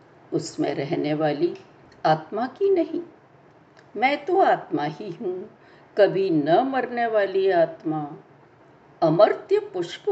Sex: female